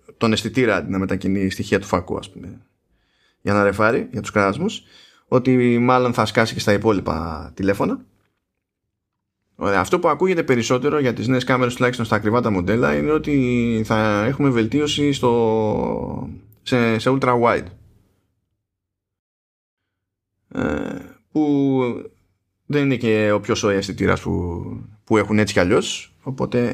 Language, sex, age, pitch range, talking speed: Greek, male, 20-39, 100-125 Hz, 140 wpm